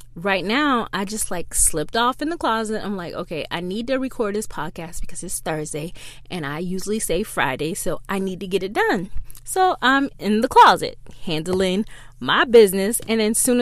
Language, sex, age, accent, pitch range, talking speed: English, female, 20-39, American, 180-235 Hz, 200 wpm